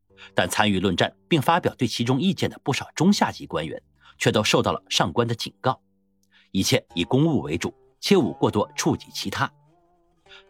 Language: Chinese